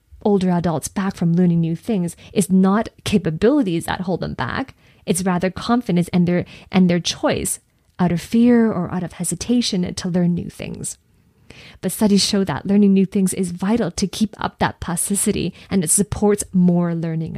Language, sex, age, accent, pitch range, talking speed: English, female, 20-39, American, 175-215 Hz, 180 wpm